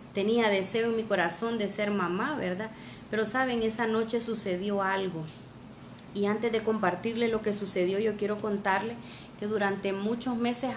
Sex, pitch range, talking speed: female, 195-225 Hz, 160 wpm